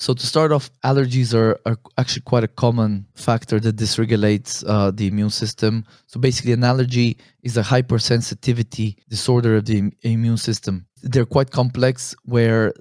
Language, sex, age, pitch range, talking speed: English, male, 20-39, 115-130 Hz, 165 wpm